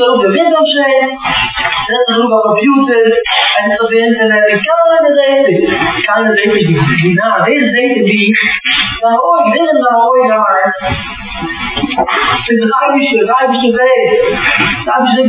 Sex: female